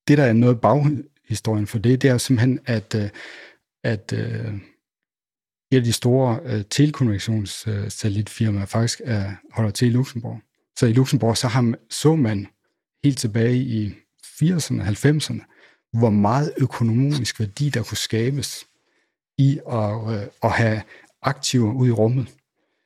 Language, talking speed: Danish, 135 wpm